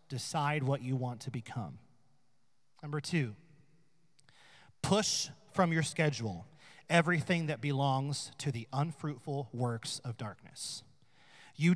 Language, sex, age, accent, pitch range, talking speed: English, male, 30-49, American, 140-180 Hz, 110 wpm